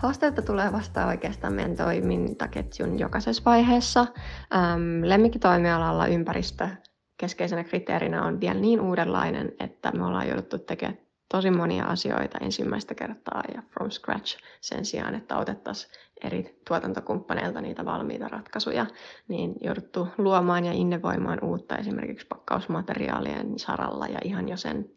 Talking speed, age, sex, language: 125 wpm, 20-39, female, Finnish